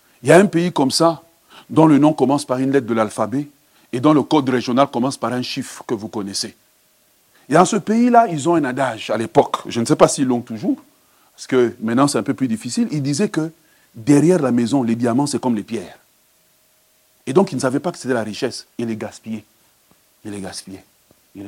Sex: male